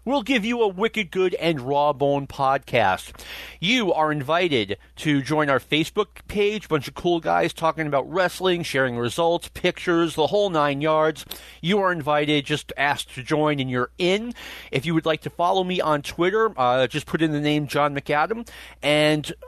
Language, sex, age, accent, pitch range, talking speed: English, male, 40-59, American, 145-185 Hz, 185 wpm